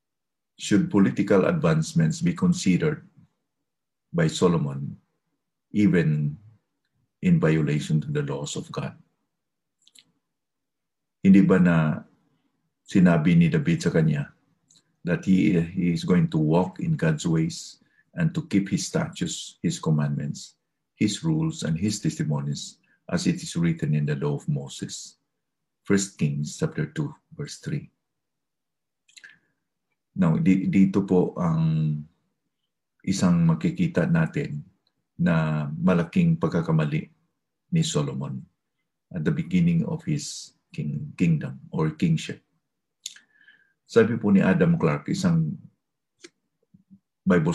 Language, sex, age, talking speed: English, male, 50-69, 105 wpm